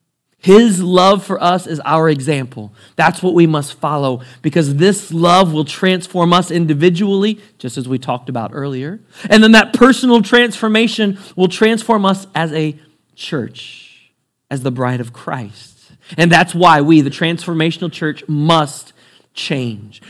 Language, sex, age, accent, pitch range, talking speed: English, male, 40-59, American, 140-180 Hz, 150 wpm